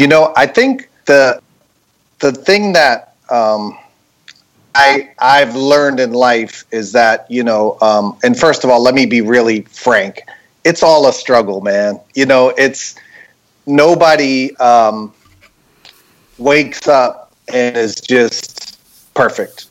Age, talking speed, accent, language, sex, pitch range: 40-59, 135 wpm, American, English, male, 115-145 Hz